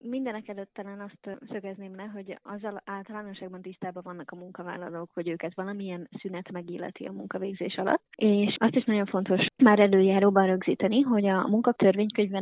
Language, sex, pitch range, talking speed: Hungarian, female, 180-200 Hz, 150 wpm